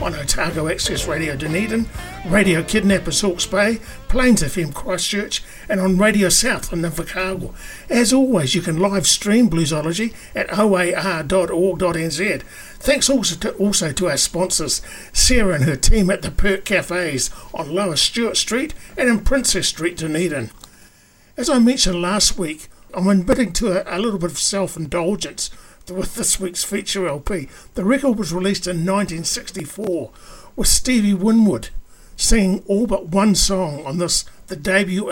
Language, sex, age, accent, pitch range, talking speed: English, male, 50-69, British, 170-210 Hz, 150 wpm